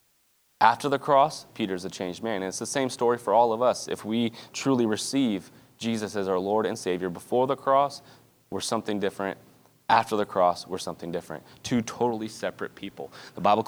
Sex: male